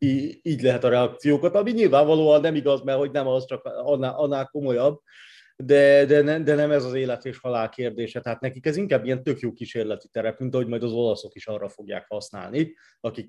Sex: male